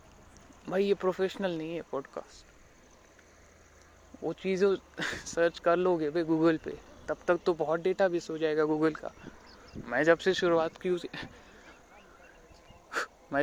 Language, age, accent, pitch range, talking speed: Marathi, 20-39, native, 155-190 Hz, 105 wpm